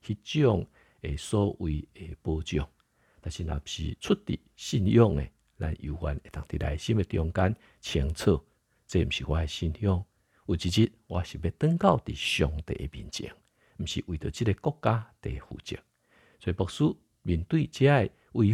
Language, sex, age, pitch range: Chinese, male, 50-69, 75-115 Hz